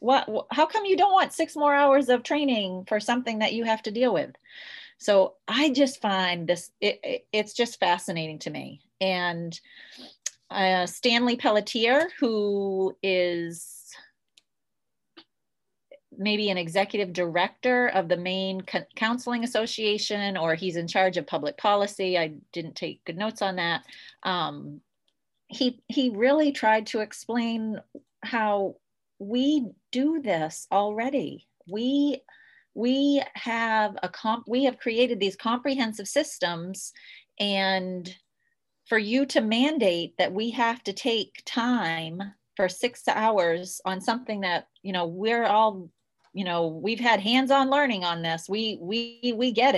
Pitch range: 190-260 Hz